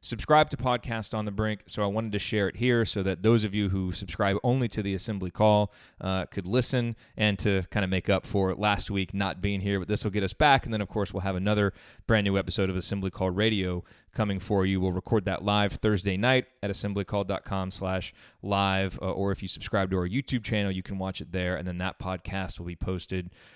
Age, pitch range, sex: 30-49, 100-120 Hz, male